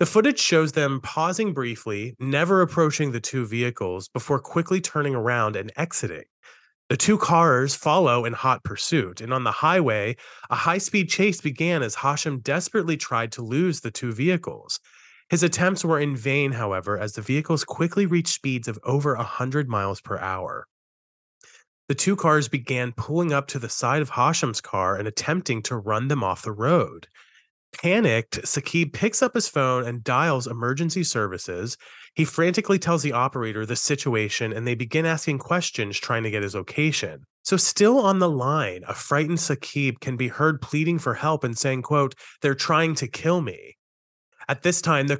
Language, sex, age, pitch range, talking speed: English, male, 30-49, 120-165 Hz, 175 wpm